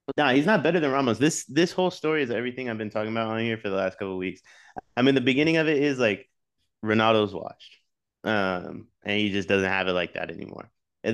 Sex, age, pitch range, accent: male, 20-39, 95-125 Hz, American